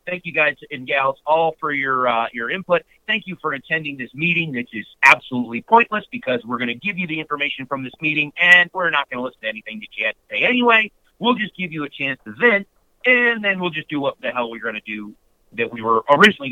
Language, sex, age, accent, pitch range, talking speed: English, male, 50-69, American, 135-185 Hz, 260 wpm